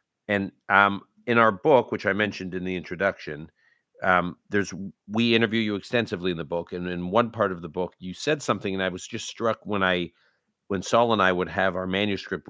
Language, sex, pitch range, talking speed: English, male, 90-115 Hz, 215 wpm